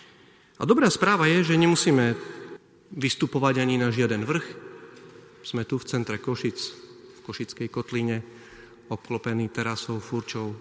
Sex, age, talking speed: male, 40-59, 125 wpm